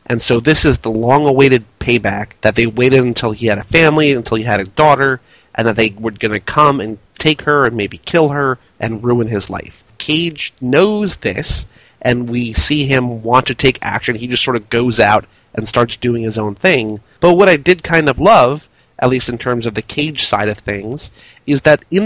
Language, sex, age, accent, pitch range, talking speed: English, male, 30-49, American, 115-155 Hz, 220 wpm